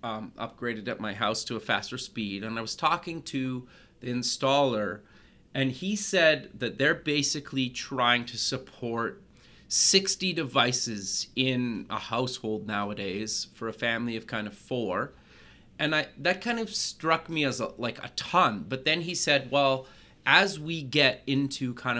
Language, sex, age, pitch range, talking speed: English, male, 30-49, 115-140 Hz, 165 wpm